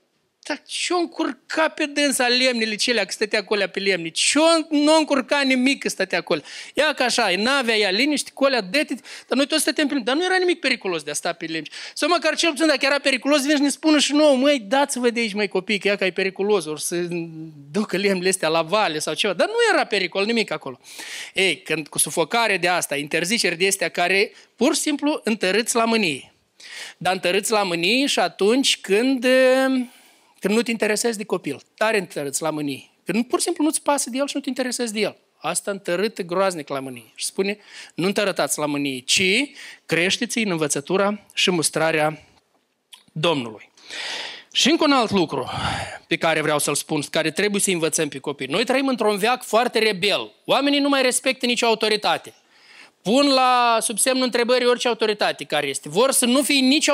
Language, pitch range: Romanian, 180-275 Hz